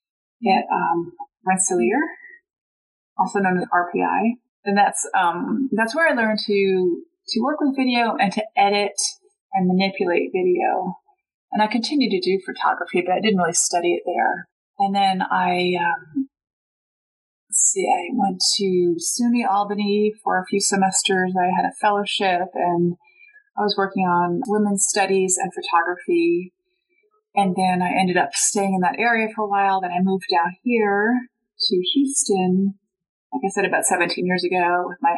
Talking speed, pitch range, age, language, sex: 160 wpm, 180-255 Hz, 30-49, English, female